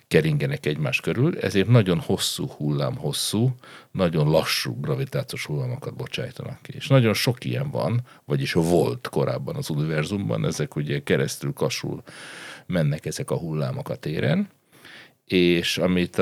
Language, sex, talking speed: Hungarian, male, 135 wpm